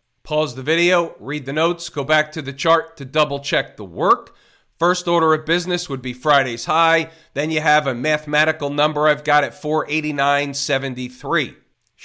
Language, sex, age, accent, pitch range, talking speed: English, male, 40-59, American, 135-165 Hz, 165 wpm